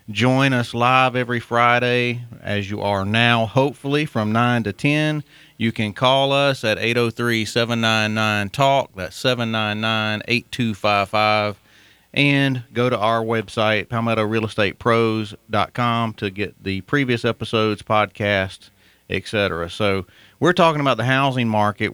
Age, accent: 40-59, American